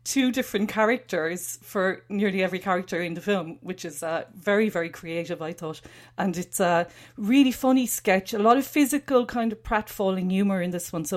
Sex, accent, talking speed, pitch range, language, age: female, Irish, 195 wpm, 170-215 Hz, English, 40-59